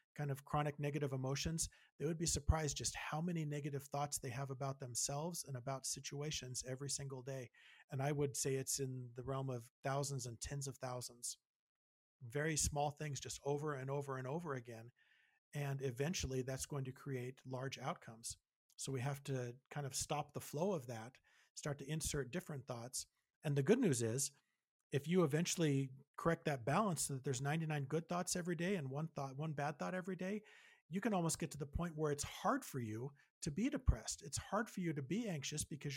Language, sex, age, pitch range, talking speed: English, male, 40-59, 130-160 Hz, 205 wpm